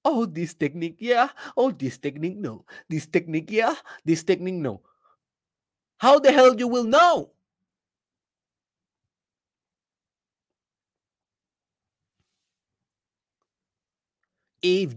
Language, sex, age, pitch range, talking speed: Spanish, male, 30-49, 155-220 Hz, 85 wpm